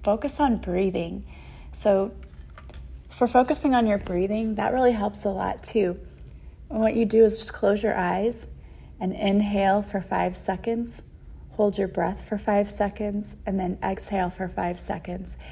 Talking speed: 160 wpm